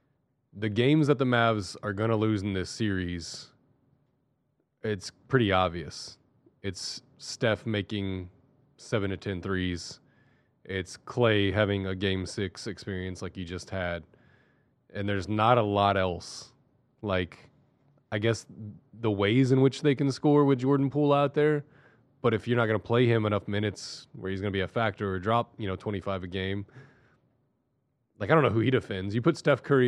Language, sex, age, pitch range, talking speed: English, male, 20-39, 105-135 Hz, 175 wpm